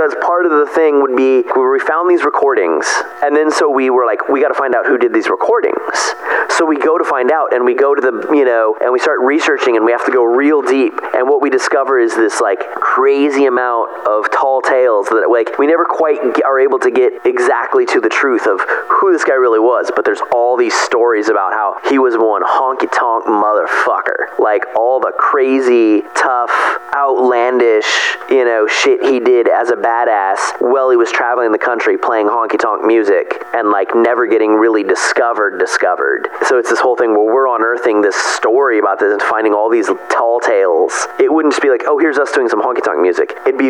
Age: 30-49